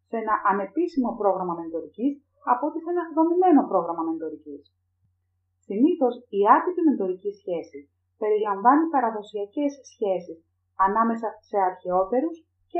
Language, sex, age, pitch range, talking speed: Greek, female, 30-49, 175-265 Hz, 115 wpm